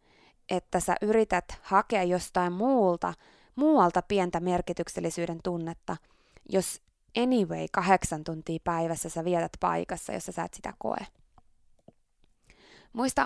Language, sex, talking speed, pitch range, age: Finnish, female, 110 wpm, 170-215 Hz, 20-39